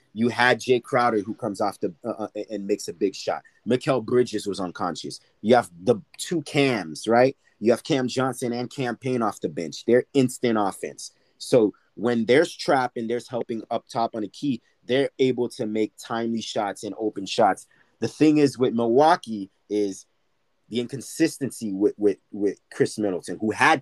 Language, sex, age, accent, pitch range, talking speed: English, male, 30-49, American, 115-140 Hz, 180 wpm